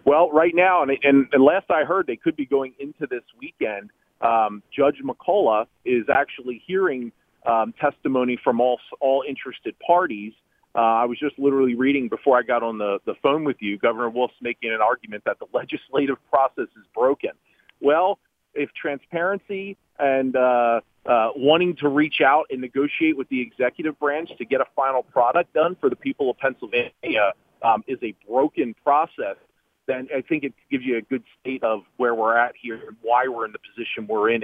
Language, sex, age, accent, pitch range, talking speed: English, male, 40-59, American, 115-160 Hz, 190 wpm